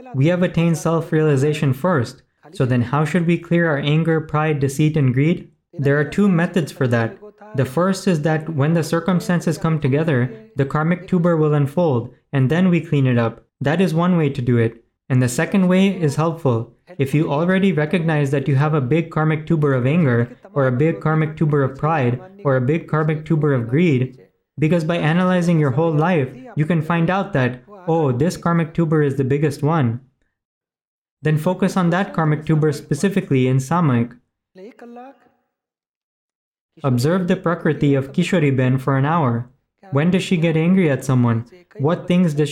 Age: 20-39